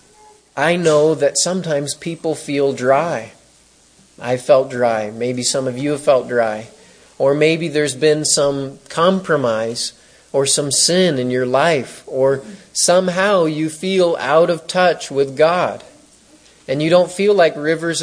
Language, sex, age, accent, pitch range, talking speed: English, male, 30-49, American, 135-180 Hz, 145 wpm